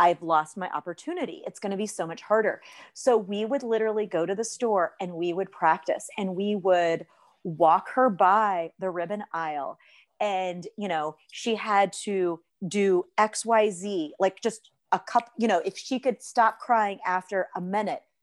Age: 40-59